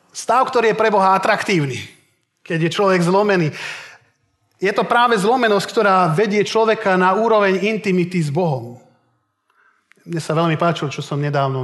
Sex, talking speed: male, 150 wpm